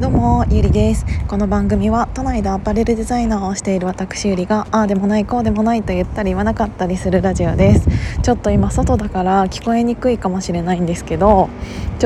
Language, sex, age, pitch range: Japanese, female, 20-39, 190-230 Hz